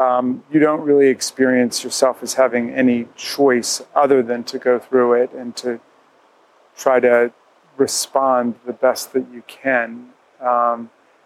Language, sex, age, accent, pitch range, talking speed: English, male, 40-59, American, 120-135 Hz, 145 wpm